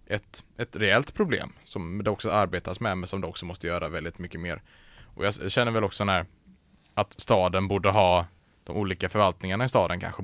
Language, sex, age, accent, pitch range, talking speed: Swedish, male, 20-39, Norwegian, 90-100 Hz, 200 wpm